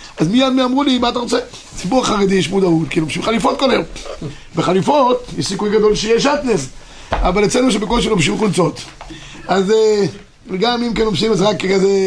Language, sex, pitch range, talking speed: Hebrew, male, 185-240 Hz, 180 wpm